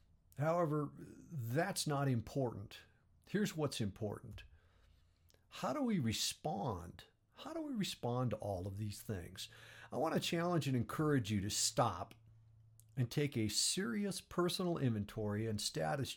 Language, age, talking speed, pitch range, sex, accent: English, 50-69, 135 wpm, 110-165 Hz, male, American